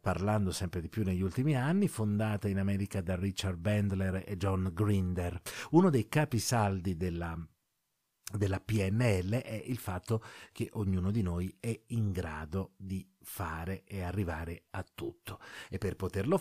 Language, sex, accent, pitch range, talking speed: Italian, male, native, 95-135 Hz, 150 wpm